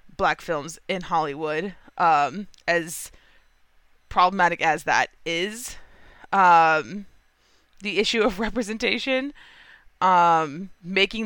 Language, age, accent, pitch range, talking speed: English, 20-39, American, 165-200 Hz, 90 wpm